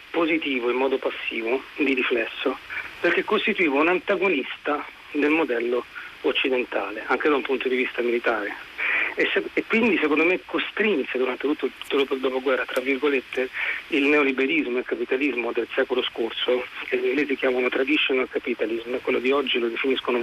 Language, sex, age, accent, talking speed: Italian, male, 40-59, native, 155 wpm